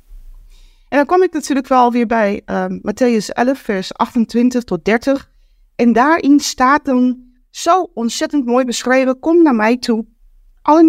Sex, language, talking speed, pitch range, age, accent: female, Dutch, 155 wpm, 185-245 Hz, 30-49, Dutch